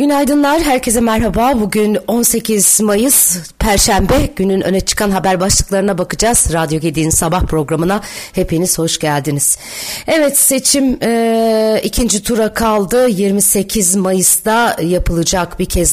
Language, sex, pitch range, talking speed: Turkish, female, 190-245 Hz, 115 wpm